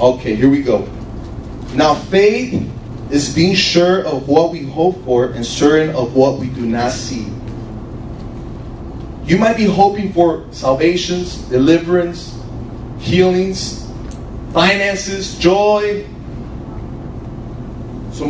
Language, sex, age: English, male, 30-49